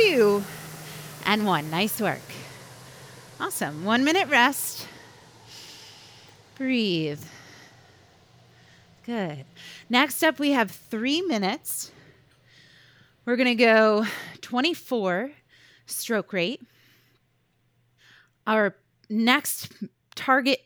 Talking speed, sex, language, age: 75 wpm, female, English, 30-49